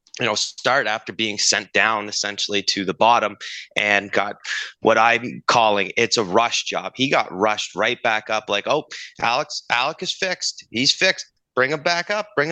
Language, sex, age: English, male, 30-49